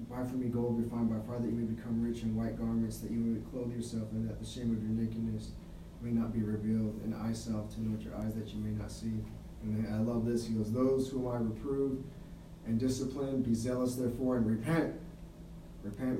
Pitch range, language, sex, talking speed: 115-130 Hz, English, male, 225 wpm